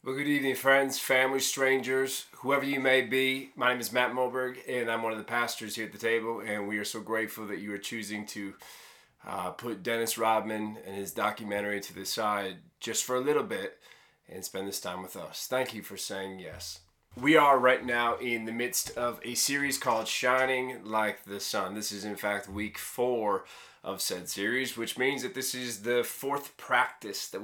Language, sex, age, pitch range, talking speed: English, male, 20-39, 110-135 Hz, 205 wpm